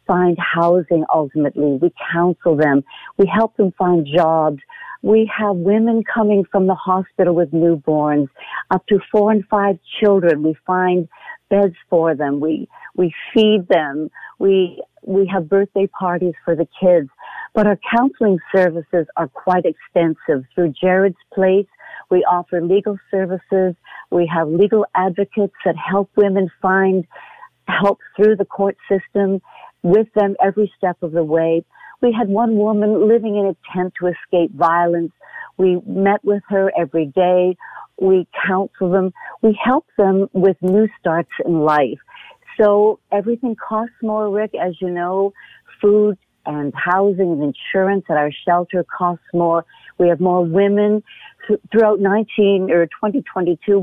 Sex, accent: female, American